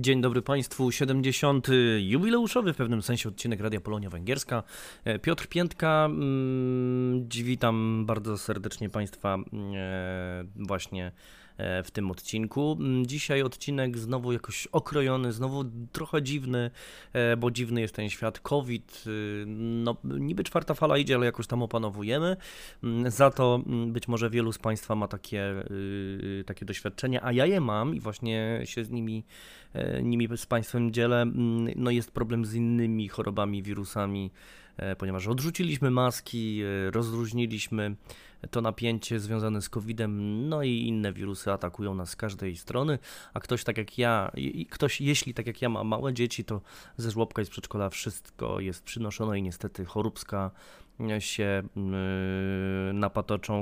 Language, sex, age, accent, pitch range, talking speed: Polish, male, 20-39, native, 105-125 Hz, 135 wpm